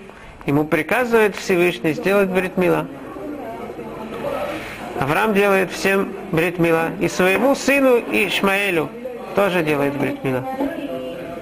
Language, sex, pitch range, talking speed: Russian, male, 170-230 Hz, 85 wpm